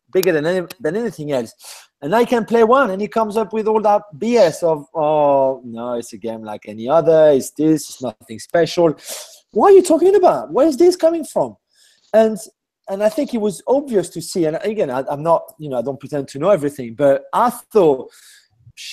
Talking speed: 225 wpm